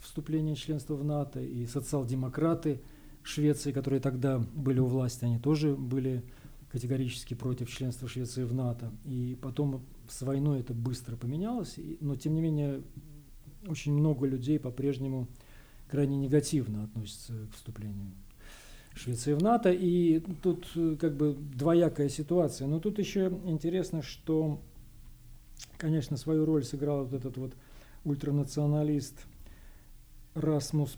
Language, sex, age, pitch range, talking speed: Russian, male, 40-59, 130-155 Hz, 125 wpm